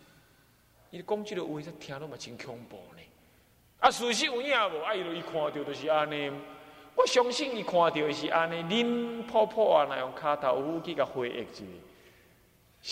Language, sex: Chinese, male